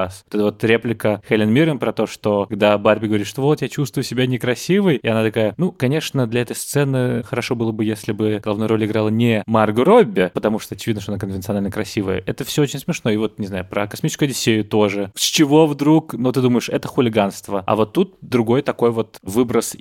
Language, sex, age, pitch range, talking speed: Russian, male, 20-39, 105-120 Hz, 220 wpm